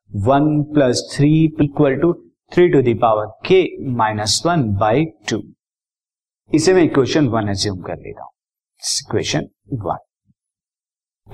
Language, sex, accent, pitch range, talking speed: Hindi, male, native, 125-150 Hz, 125 wpm